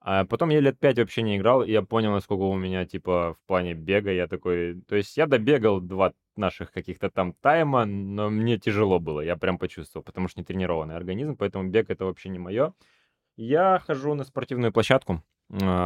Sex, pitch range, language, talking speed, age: male, 90-115 Hz, Russian, 200 wpm, 20-39